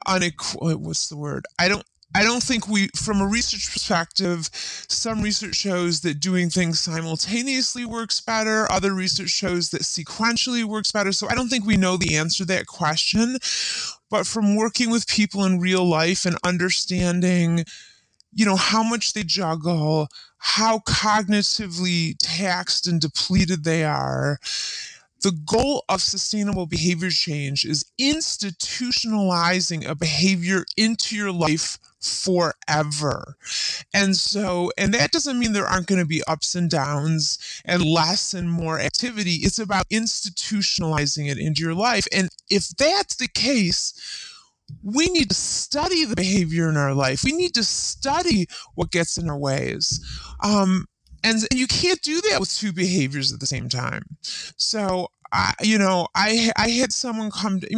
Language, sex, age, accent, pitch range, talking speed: English, female, 20-39, American, 170-220 Hz, 160 wpm